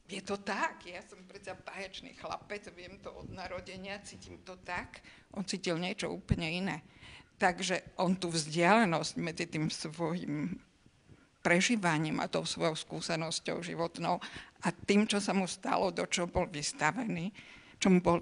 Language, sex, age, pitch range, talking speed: Slovak, female, 50-69, 175-205 Hz, 150 wpm